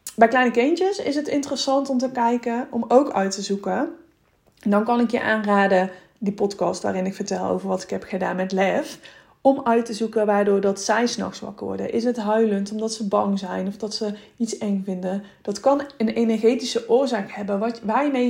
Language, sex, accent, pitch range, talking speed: Dutch, female, Dutch, 195-240 Hz, 205 wpm